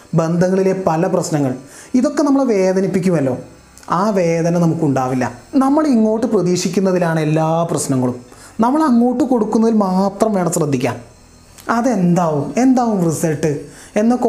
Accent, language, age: native, Malayalam, 30-49